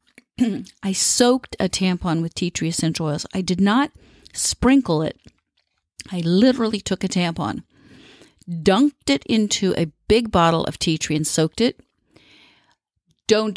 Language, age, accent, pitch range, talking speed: English, 50-69, American, 165-220 Hz, 140 wpm